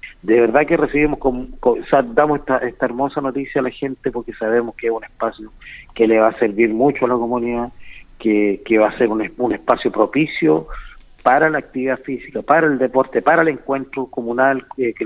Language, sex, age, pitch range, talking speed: Spanish, male, 40-59, 115-145 Hz, 205 wpm